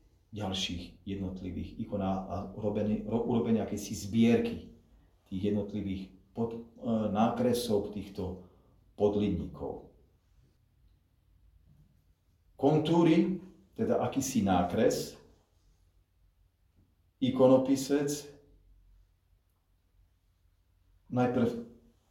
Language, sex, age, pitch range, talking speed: Slovak, male, 40-59, 90-130 Hz, 50 wpm